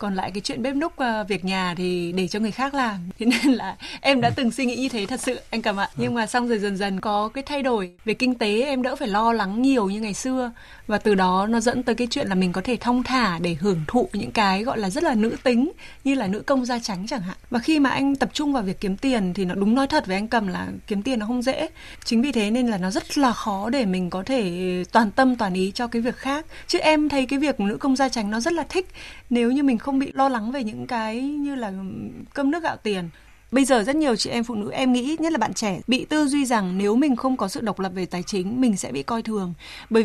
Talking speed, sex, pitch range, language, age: 290 wpm, female, 205-265 Hz, Vietnamese, 20-39